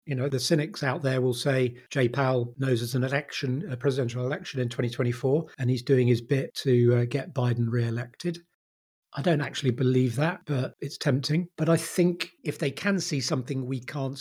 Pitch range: 120-140 Hz